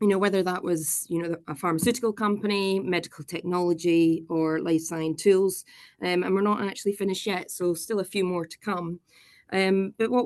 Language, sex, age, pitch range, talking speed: English, female, 20-39, 170-200 Hz, 195 wpm